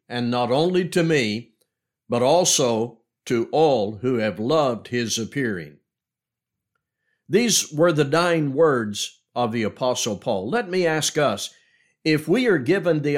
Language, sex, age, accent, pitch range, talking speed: English, male, 60-79, American, 125-160 Hz, 145 wpm